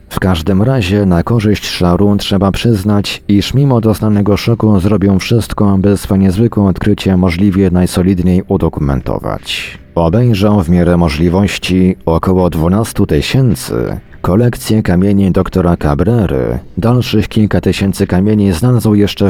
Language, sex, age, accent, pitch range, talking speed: Polish, male, 40-59, native, 90-105 Hz, 120 wpm